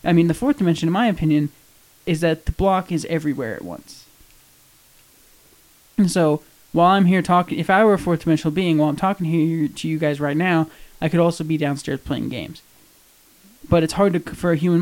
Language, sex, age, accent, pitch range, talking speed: English, male, 20-39, American, 150-170 Hz, 210 wpm